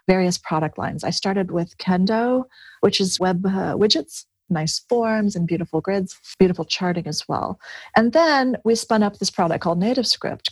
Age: 40-59